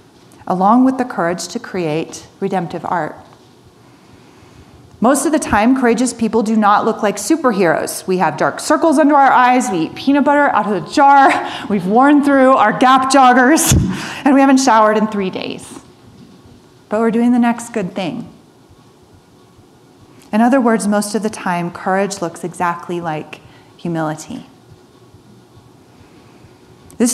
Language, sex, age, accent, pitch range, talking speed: English, female, 30-49, American, 190-255 Hz, 150 wpm